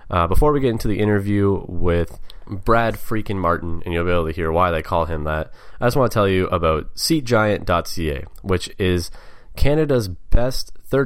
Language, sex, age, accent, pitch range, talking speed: English, male, 20-39, American, 85-105 Hz, 185 wpm